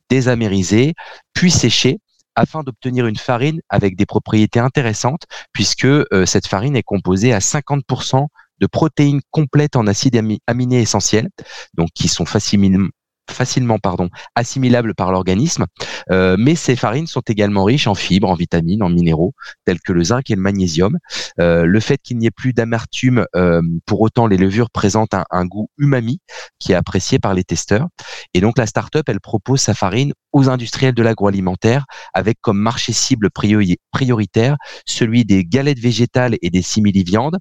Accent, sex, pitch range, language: French, male, 95-125 Hz, French